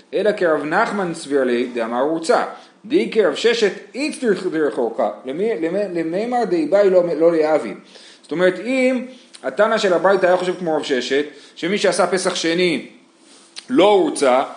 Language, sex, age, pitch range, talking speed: Hebrew, male, 30-49, 165-210 Hz, 165 wpm